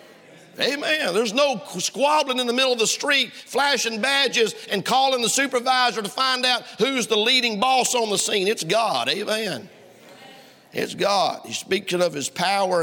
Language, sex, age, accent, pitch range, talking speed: English, male, 50-69, American, 200-255 Hz, 170 wpm